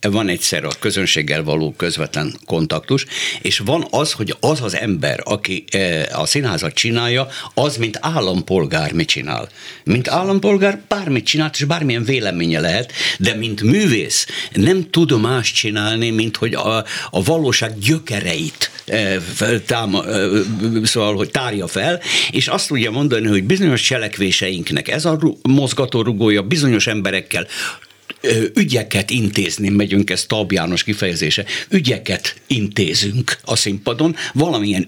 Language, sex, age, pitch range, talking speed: Hungarian, male, 60-79, 105-155 Hz, 135 wpm